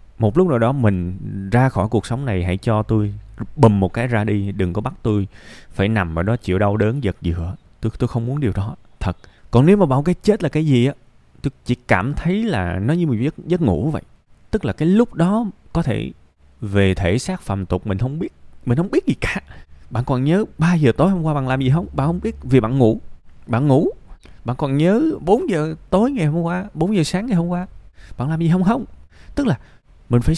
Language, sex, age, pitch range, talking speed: Vietnamese, male, 20-39, 100-160 Hz, 245 wpm